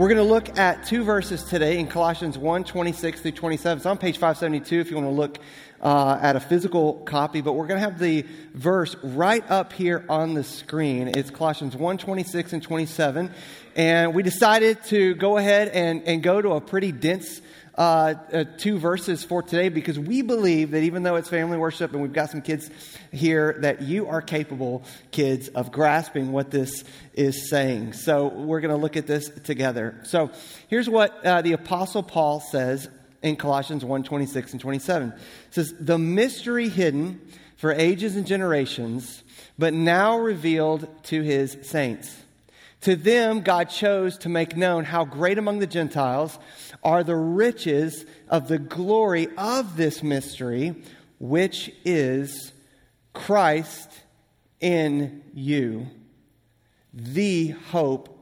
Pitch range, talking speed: 145-175 Hz, 165 wpm